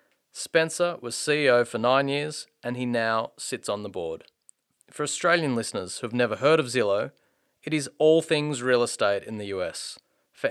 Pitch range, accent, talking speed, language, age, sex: 115-145 Hz, Australian, 185 wpm, English, 30-49, male